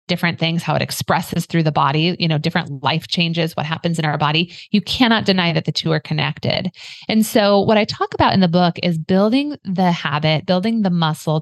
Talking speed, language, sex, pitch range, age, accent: 220 wpm, English, female, 165-215 Hz, 30-49, American